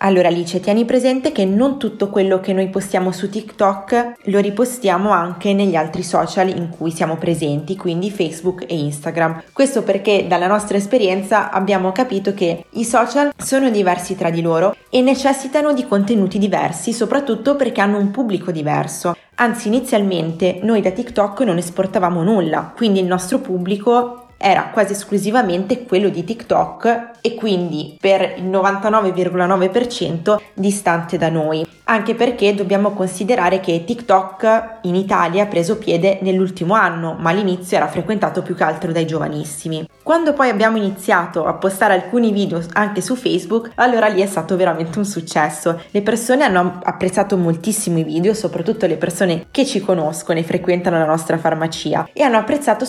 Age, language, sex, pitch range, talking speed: 20-39, Italian, female, 175-220 Hz, 160 wpm